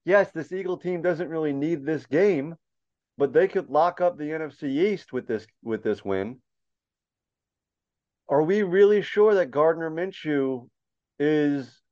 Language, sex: English, male